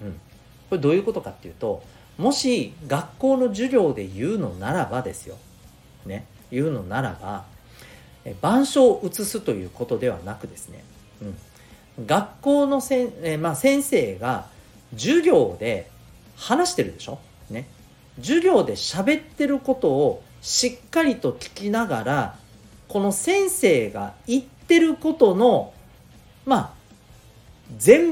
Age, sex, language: 40-59, male, Japanese